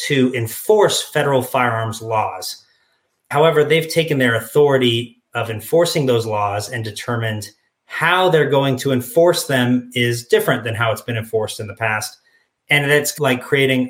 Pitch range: 115-145 Hz